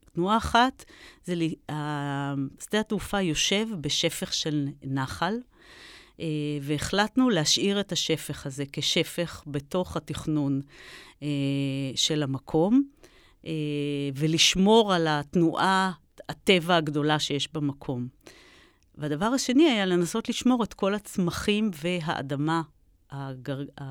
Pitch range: 145-185 Hz